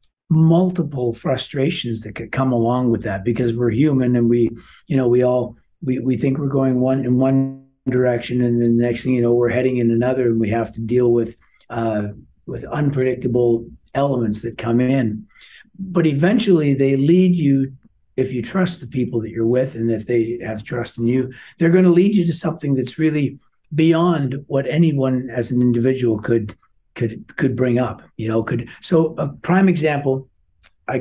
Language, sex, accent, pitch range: English, male, American, 120-140 Hz